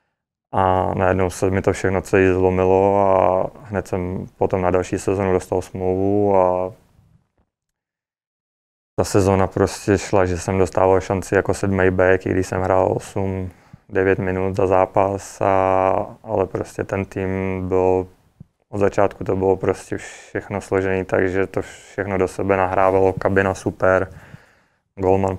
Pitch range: 95-100 Hz